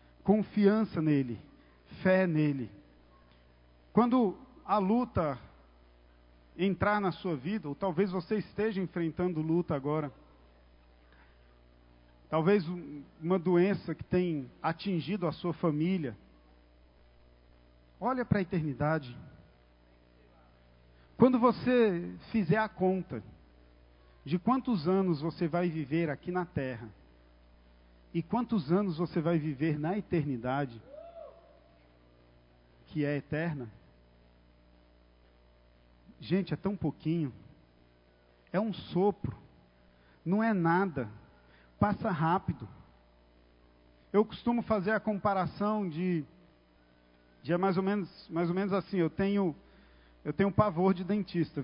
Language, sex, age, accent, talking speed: Portuguese, male, 50-69, Brazilian, 100 wpm